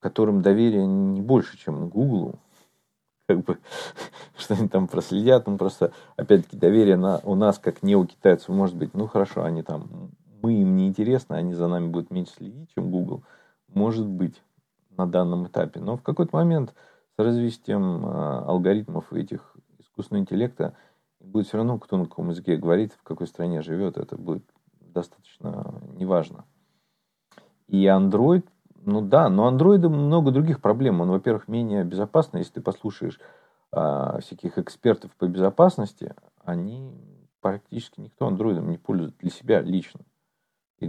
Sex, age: male, 40-59